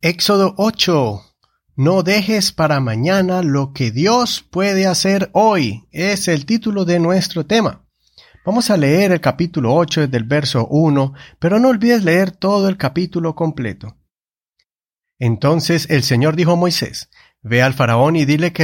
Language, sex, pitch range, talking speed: Spanish, male, 125-180 Hz, 150 wpm